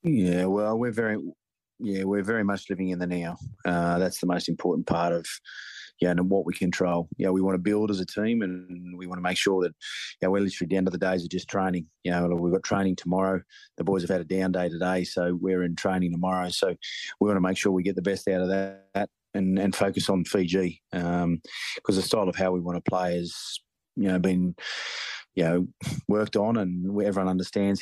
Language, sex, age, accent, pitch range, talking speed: English, male, 30-49, Australian, 90-95 Hz, 235 wpm